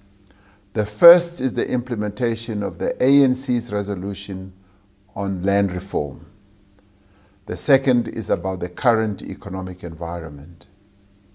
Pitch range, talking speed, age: 100-130 Hz, 105 wpm, 60-79